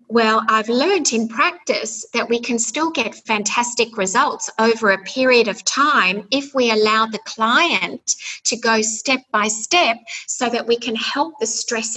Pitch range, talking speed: 195-235 Hz, 170 wpm